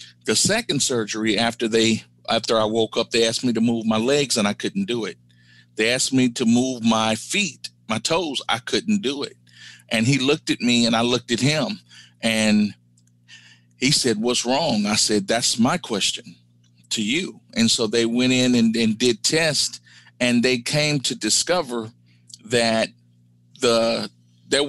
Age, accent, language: 50-69, American, English